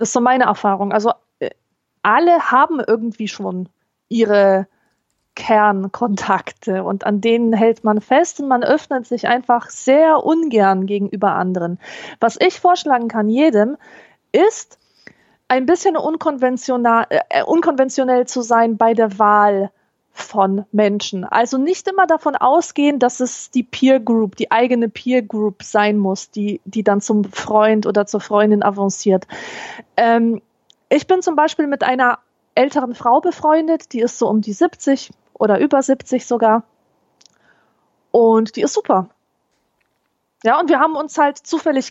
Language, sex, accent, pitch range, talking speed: German, female, German, 215-295 Hz, 145 wpm